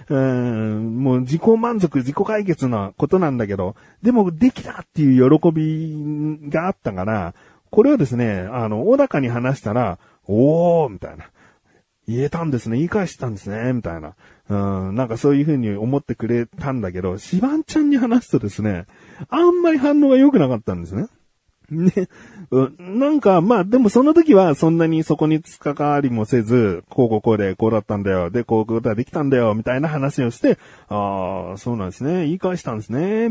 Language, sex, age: Japanese, male, 40-59